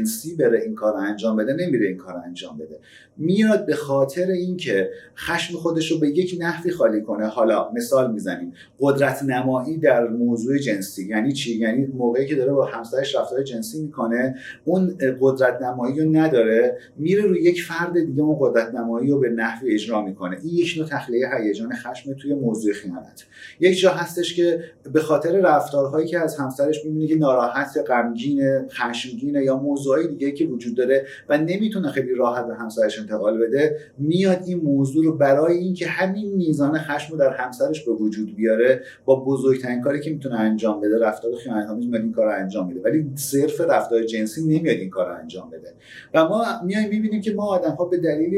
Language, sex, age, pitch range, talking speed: Persian, male, 30-49, 125-175 Hz, 180 wpm